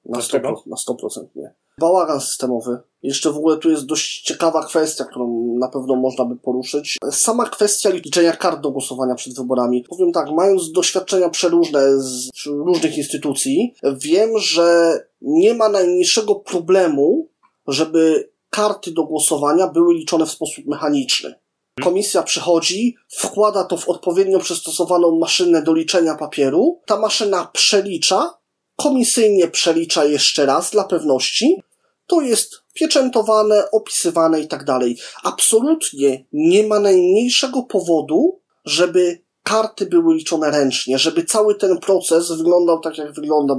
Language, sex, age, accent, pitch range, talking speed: Polish, male, 20-39, native, 155-210 Hz, 130 wpm